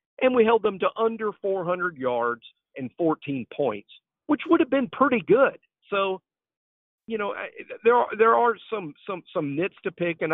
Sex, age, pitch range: male, 50-69, 130-205 Hz